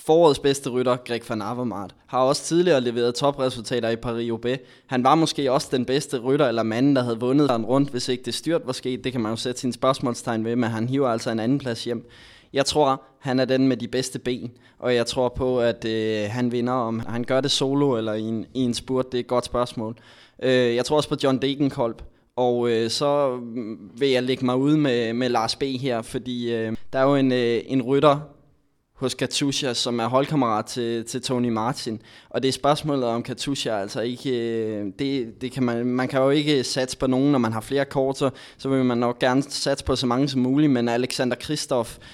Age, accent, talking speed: 20-39, native, 220 wpm